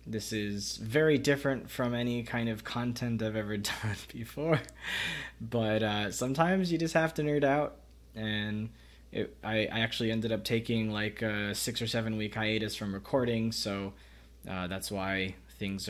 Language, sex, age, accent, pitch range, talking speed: English, male, 20-39, American, 85-110 Hz, 165 wpm